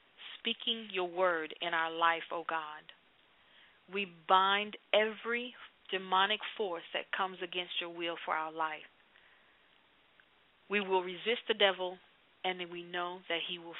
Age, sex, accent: 40-59, female, American